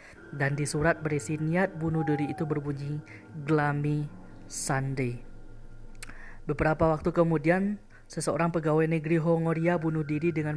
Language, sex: Indonesian, female